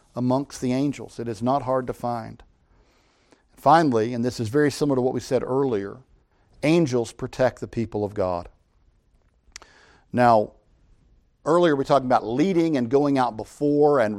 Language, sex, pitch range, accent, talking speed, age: English, male, 115-150 Hz, American, 155 wpm, 50-69